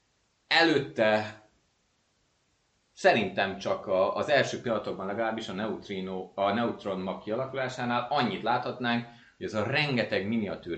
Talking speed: 115 wpm